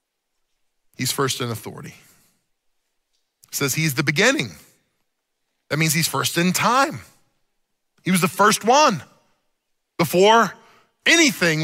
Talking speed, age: 115 wpm, 40-59